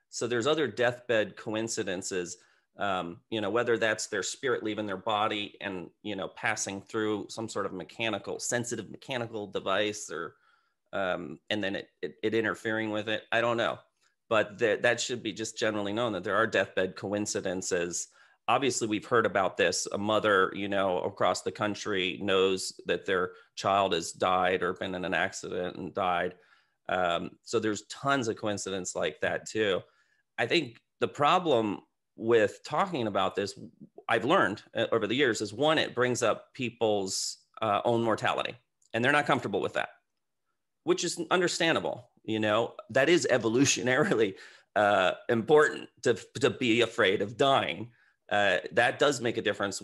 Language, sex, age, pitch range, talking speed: English, male, 30-49, 100-120 Hz, 165 wpm